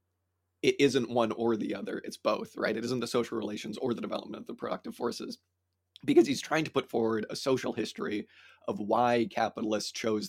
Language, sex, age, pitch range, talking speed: English, male, 30-49, 100-120 Hz, 200 wpm